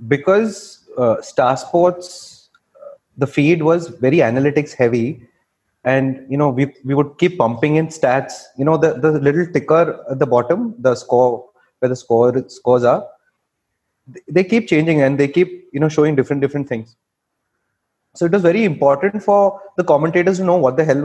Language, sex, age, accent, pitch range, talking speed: English, male, 30-49, Indian, 130-170 Hz, 175 wpm